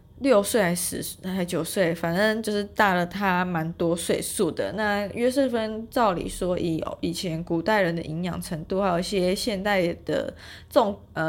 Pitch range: 170-210 Hz